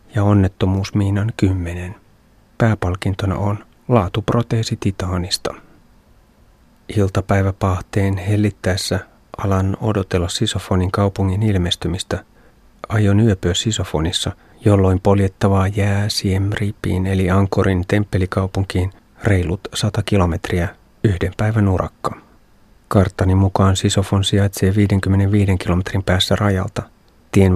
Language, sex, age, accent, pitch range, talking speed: Finnish, male, 30-49, native, 95-105 Hz, 85 wpm